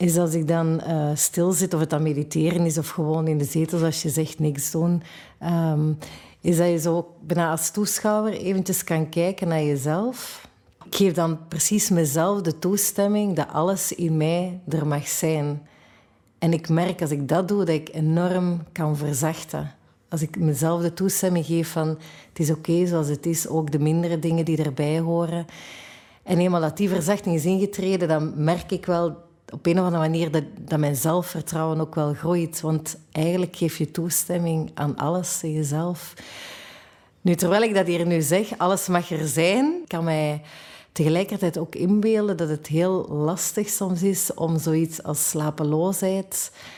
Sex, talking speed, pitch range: female, 180 wpm, 155-180 Hz